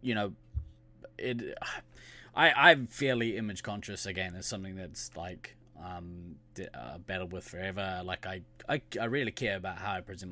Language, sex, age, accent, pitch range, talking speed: English, male, 20-39, Australian, 95-115 Hz, 165 wpm